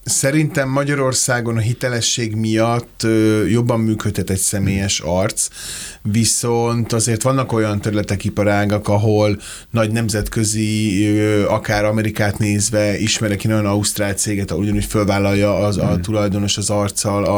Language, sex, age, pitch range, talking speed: Hungarian, male, 30-49, 100-115 Hz, 115 wpm